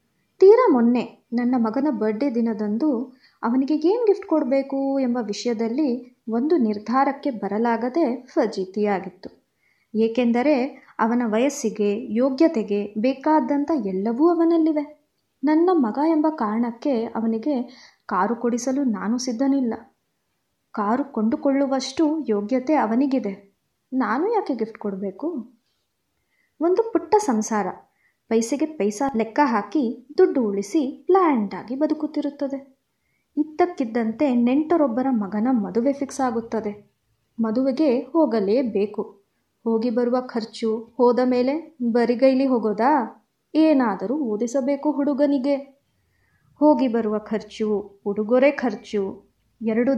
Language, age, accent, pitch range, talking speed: Kannada, 20-39, native, 225-290 Hz, 90 wpm